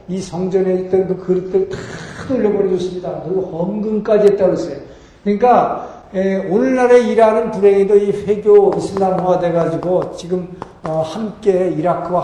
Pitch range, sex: 160-195 Hz, male